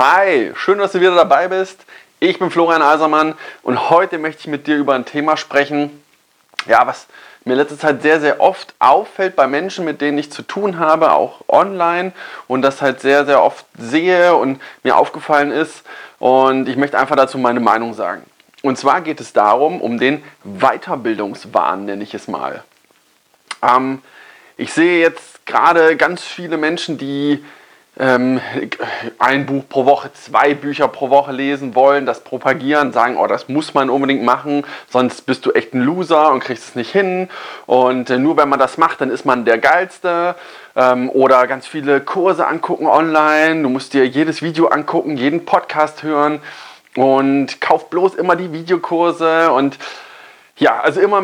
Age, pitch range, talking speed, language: 30-49, 135-170 Hz, 170 wpm, German